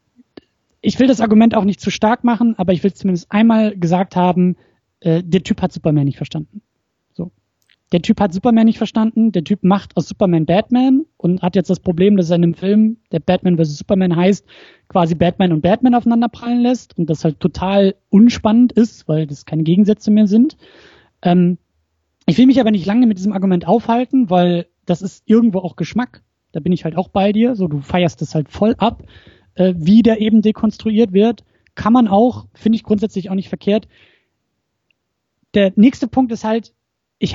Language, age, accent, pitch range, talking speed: German, 20-39, German, 175-225 Hz, 195 wpm